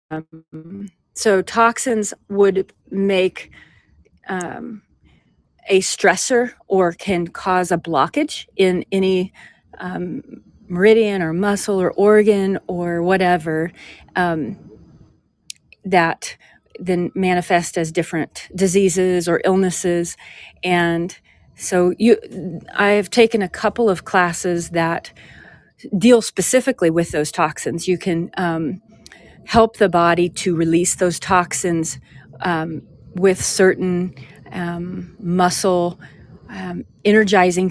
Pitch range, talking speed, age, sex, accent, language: 170-195 Hz, 105 wpm, 40-59, female, American, English